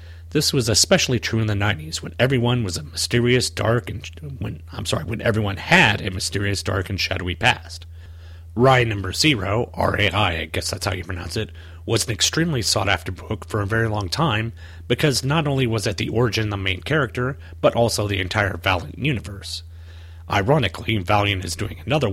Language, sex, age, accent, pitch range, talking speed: English, male, 30-49, American, 85-120 Hz, 190 wpm